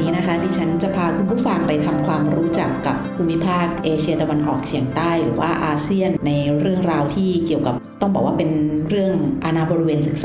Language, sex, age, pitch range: Thai, female, 30-49, 150-185 Hz